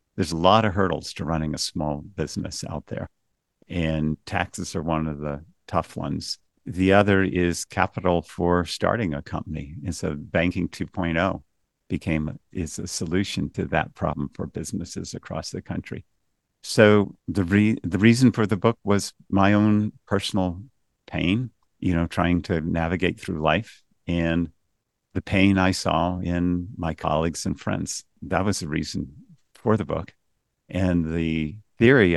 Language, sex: English, male